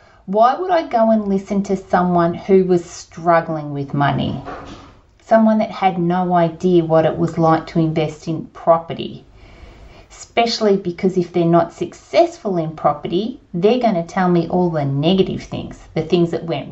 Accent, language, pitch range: Australian, English, 170-220 Hz